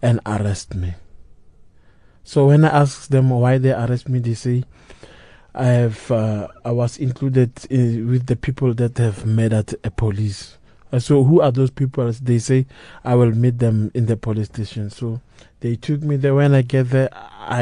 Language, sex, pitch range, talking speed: English, male, 110-130 Hz, 185 wpm